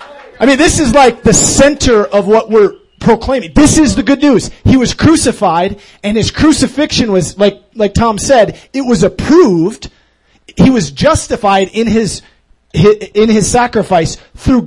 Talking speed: 165 wpm